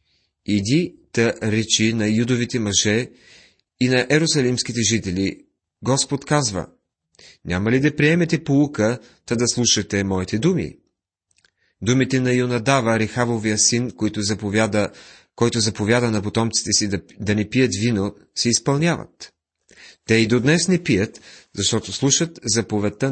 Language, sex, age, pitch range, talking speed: Bulgarian, male, 30-49, 100-130 Hz, 130 wpm